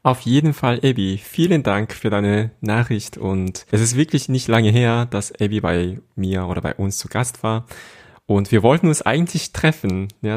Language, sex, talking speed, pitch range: German, male, 190 wpm, 95-120 Hz